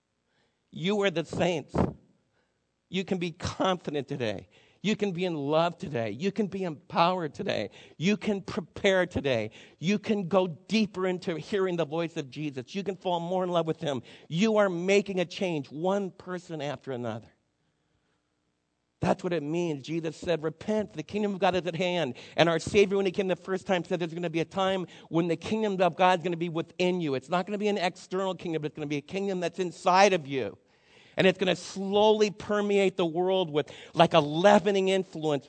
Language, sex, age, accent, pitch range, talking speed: English, male, 50-69, American, 160-195 Hz, 210 wpm